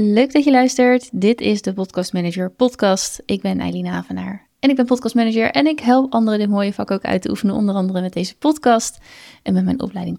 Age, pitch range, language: 20-39, 195-240 Hz, Dutch